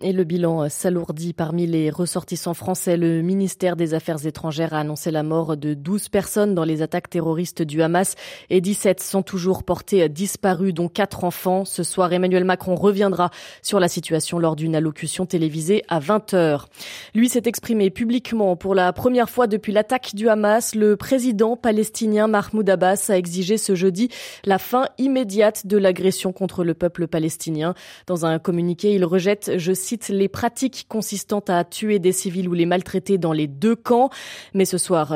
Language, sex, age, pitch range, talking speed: French, female, 20-39, 175-210 Hz, 175 wpm